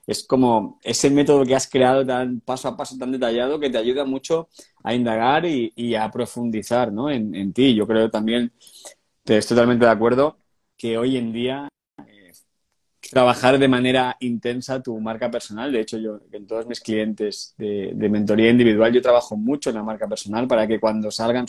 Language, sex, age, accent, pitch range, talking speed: Spanish, male, 20-39, Spanish, 115-130 Hz, 195 wpm